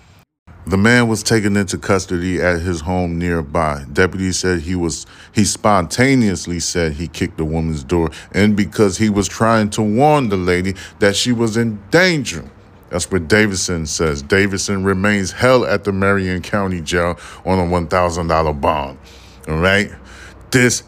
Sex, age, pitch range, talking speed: male, 30-49, 80-105 Hz, 160 wpm